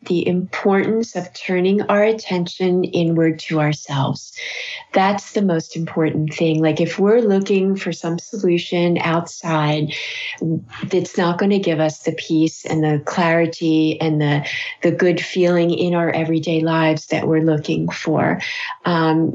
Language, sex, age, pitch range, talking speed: English, female, 30-49, 165-190 Hz, 145 wpm